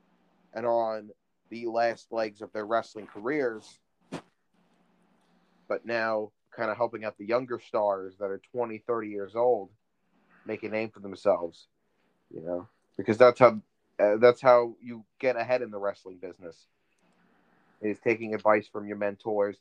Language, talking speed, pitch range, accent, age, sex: English, 155 wpm, 105-120 Hz, American, 30-49, male